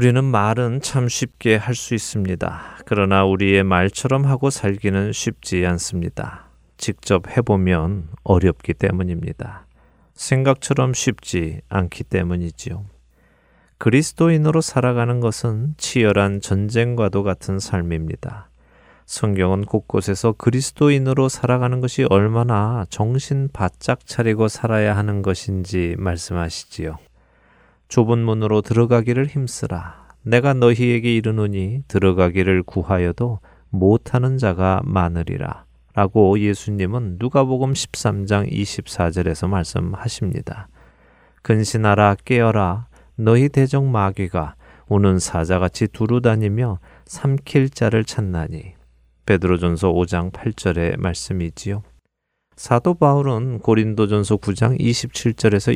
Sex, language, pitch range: male, Korean, 95-120 Hz